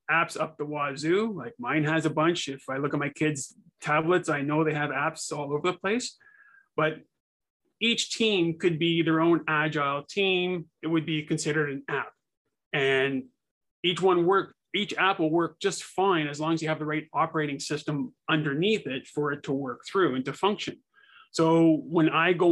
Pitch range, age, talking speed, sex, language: 150-180 Hz, 30-49, 195 wpm, male, English